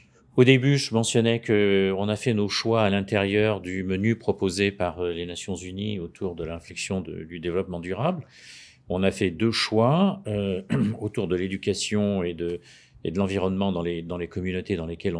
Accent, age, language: French, 40-59, French